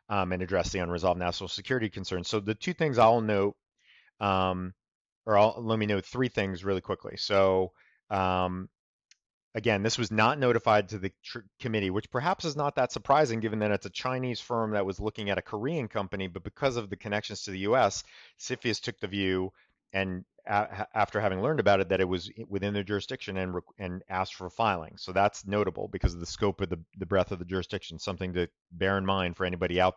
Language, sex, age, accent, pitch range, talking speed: English, male, 30-49, American, 95-110 Hz, 215 wpm